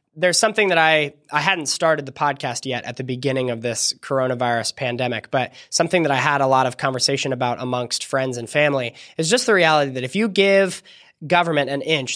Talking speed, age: 205 wpm, 20-39